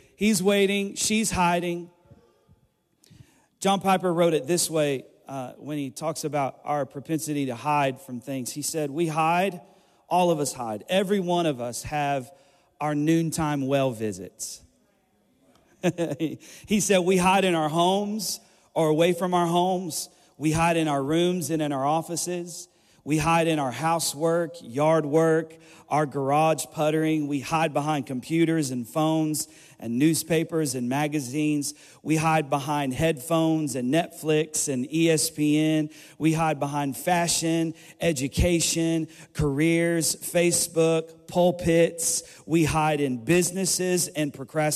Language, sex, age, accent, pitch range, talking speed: English, male, 40-59, American, 150-175 Hz, 135 wpm